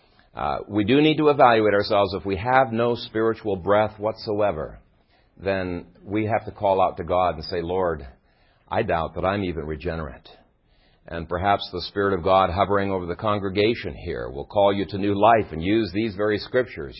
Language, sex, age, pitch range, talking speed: English, male, 50-69, 100-140 Hz, 185 wpm